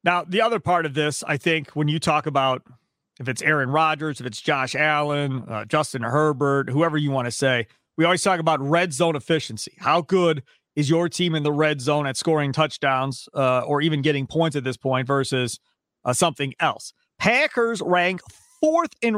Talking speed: 195 wpm